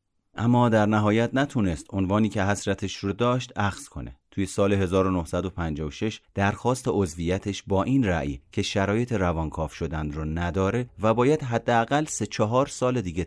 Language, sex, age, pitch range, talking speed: Persian, male, 30-49, 85-115 Hz, 145 wpm